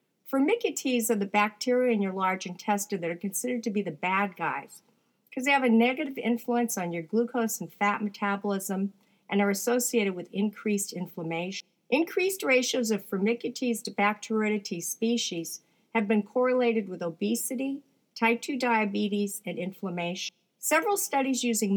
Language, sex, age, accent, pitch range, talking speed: English, female, 50-69, American, 185-230 Hz, 150 wpm